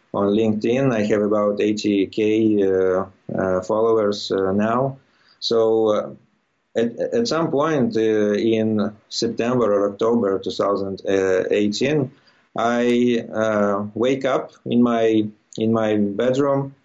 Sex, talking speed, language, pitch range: male, 115 wpm, English, 100-115 Hz